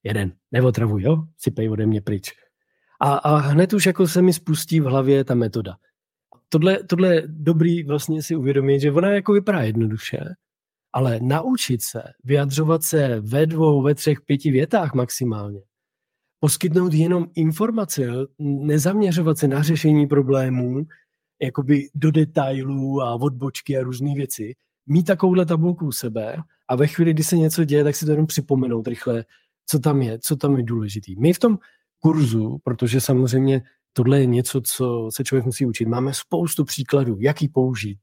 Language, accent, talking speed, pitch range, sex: Czech, native, 165 wpm, 125-155 Hz, male